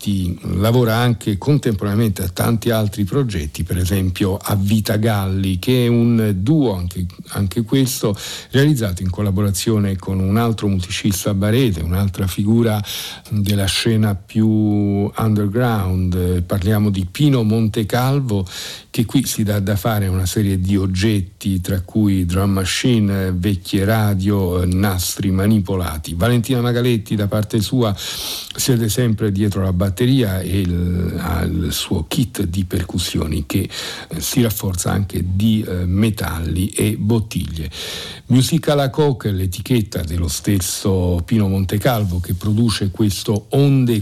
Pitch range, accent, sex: 95-115 Hz, native, male